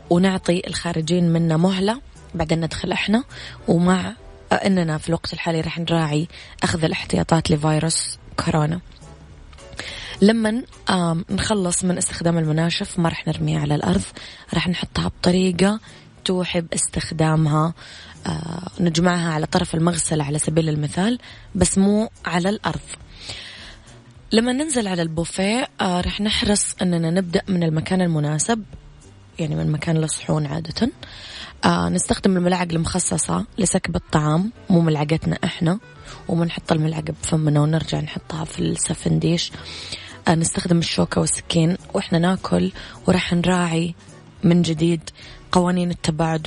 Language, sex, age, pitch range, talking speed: Arabic, female, 20-39, 155-180 Hz, 115 wpm